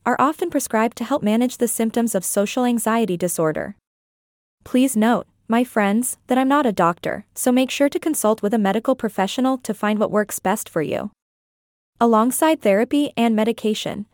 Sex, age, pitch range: female, 20-39, 200-250 Hz